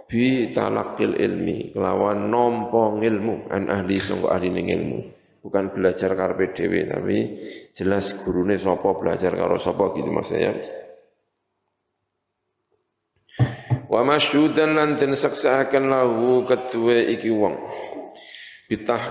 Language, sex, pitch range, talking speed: Indonesian, male, 95-125 Hz, 115 wpm